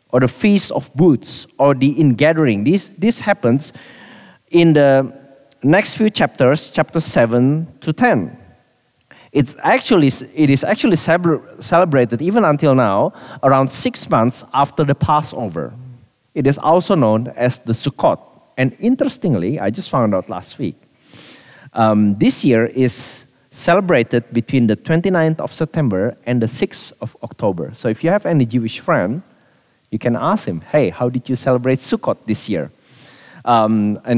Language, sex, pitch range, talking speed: English, male, 125-175 Hz, 150 wpm